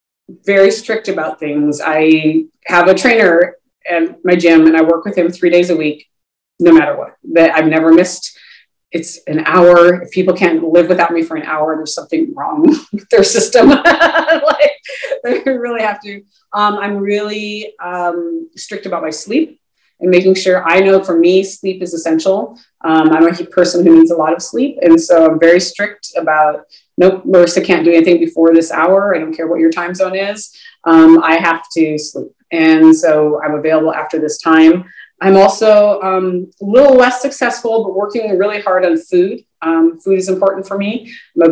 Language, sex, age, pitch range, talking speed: English, female, 30-49, 165-210 Hz, 190 wpm